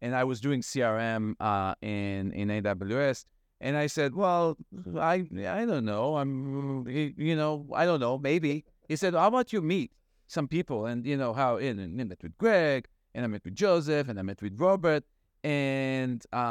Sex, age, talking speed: male, 30-49, 190 wpm